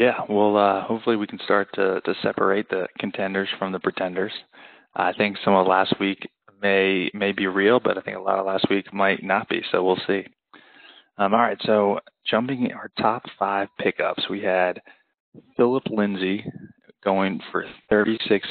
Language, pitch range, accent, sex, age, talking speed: English, 95-110 Hz, American, male, 20-39, 180 wpm